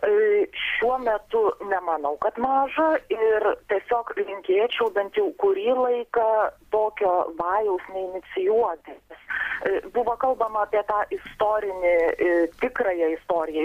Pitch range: 185-250 Hz